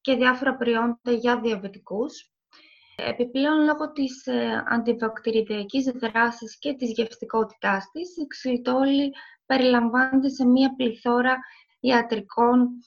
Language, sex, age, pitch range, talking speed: Greek, female, 20-39, 235-275 Hz, 105 wpm